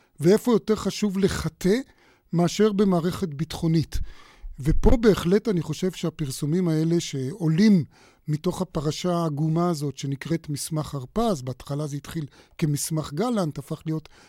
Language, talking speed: Hebrew, 120 wpm